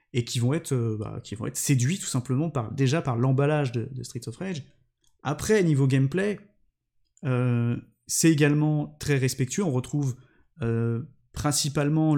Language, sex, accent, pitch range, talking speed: French, male, French, 125-150 Hz, 165 wpm